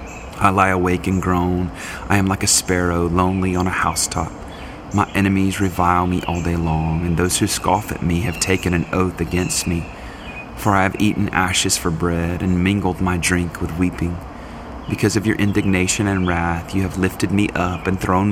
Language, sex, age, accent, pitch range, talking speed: English, male, 30-49, American, 85-100 Hz, 195 wpm